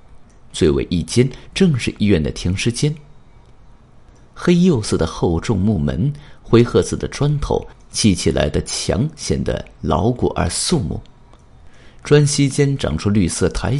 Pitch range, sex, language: 90-135 Hz, male, Chinese